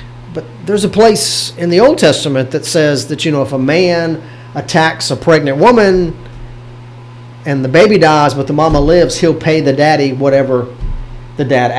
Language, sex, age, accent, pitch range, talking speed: English, male, 40-59, American, 125-165 Hz, 180 wpm